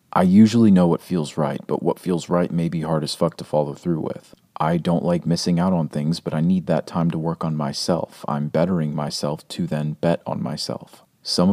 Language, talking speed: English, 230 wpm